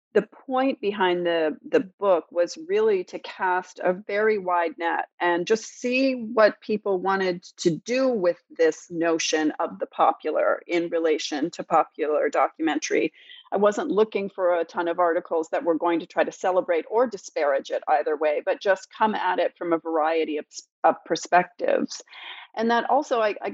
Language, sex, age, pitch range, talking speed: English, female, 40-59, 170-255 Hz, 175 wpm